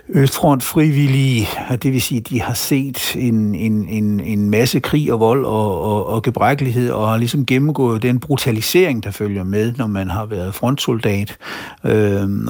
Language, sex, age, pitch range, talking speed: Danish, male, 60-79, 110-135 Hz, 175 wpm